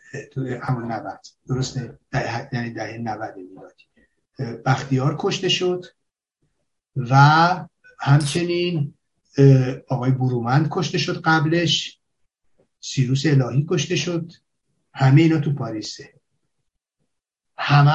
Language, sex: Persian, male